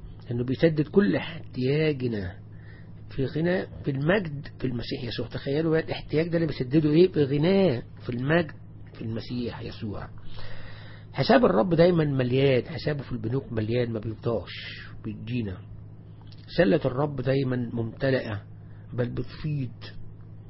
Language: English